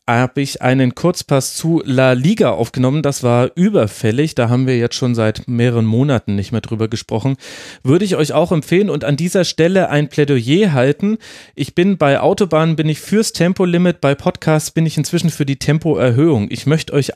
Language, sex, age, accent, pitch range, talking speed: German, male, 30-49, German, 125-155 Hz, 190 wpm